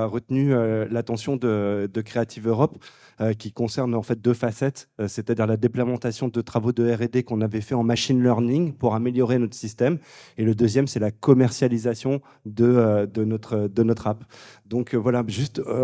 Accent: French